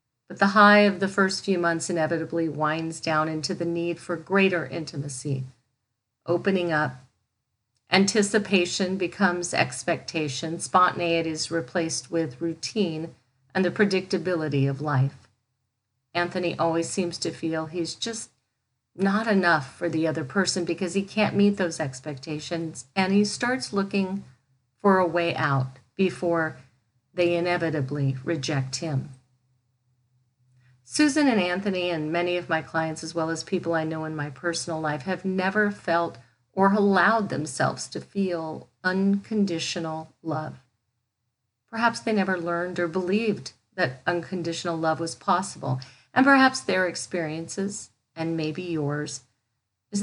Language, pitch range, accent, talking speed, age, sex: English, 135-185 Hz, American, 135 wpm, 50-69, female